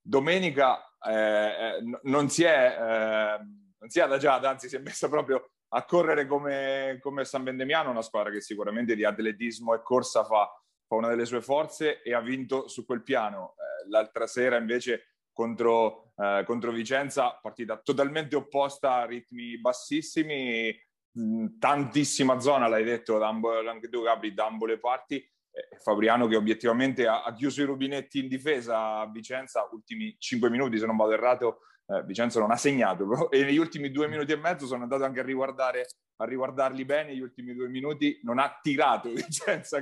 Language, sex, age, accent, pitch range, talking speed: Italian, male, 30-49, native, 110-140 Hz, 165 wpm